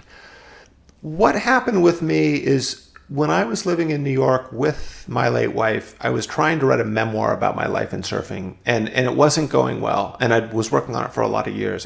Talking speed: 230 wpm